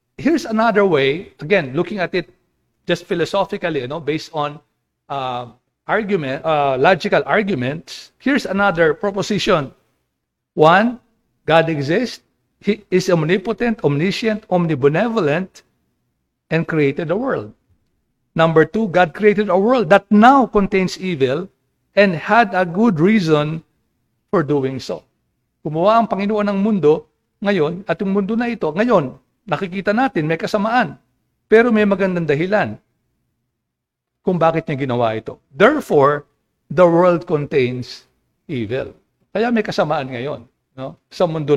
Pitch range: 155-210 Hz